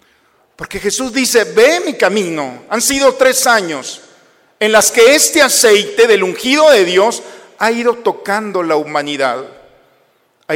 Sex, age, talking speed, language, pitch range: male, 50-69, 140 wpm, Spanish, 170-260 Hz